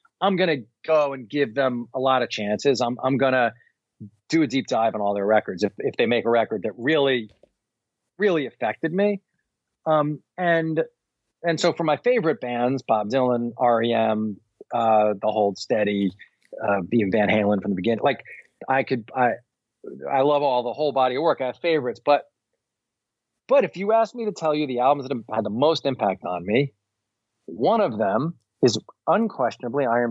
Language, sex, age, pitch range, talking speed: English, male, 40-59, 110-145 Hz, 185 wpm